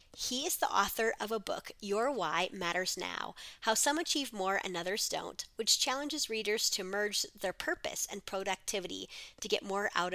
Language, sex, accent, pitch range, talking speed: English, female, American, 195-240 Hz, 185 wpm